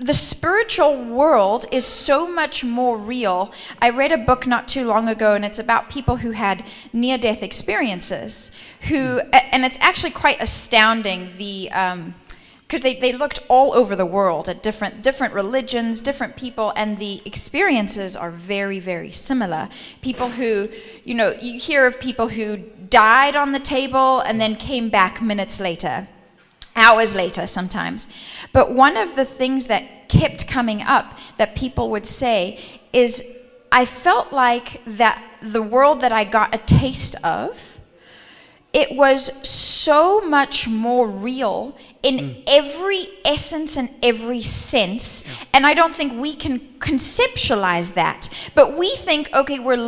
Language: English